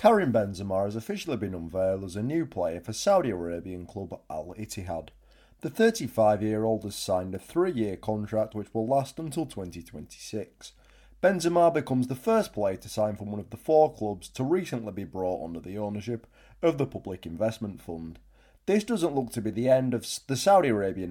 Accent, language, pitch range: British, English, 95-130 Hz